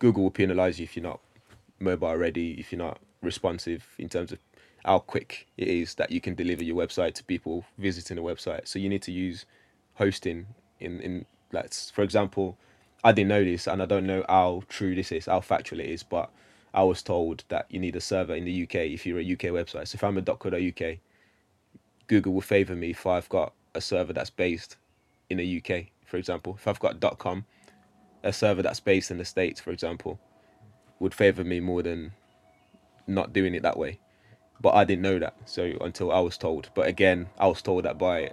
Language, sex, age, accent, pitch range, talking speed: English, male, 20-39, British, 90-100 Hz, 215 wpm